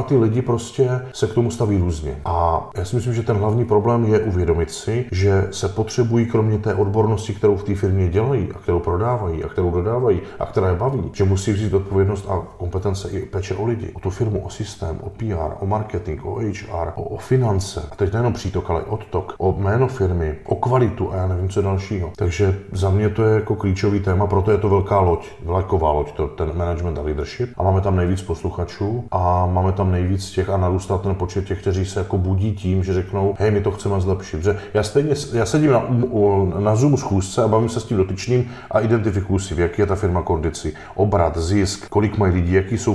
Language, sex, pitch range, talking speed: Czech, male, 95-110 Hz, 220 wpm